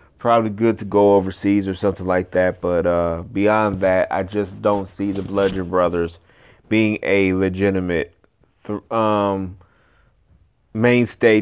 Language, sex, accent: English, male, American